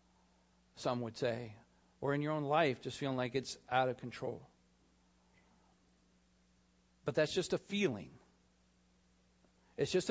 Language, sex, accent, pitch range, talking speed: English, male, American, 125-170 Hz, 130 wpm